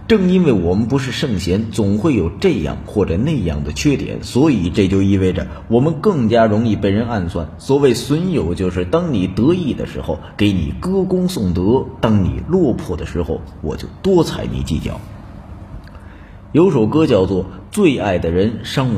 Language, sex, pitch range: Chinese, male, 90-145 Hz